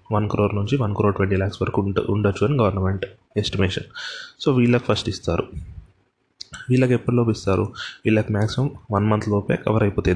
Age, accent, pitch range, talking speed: 20-39, native, 100-115 Hz, 160 wpm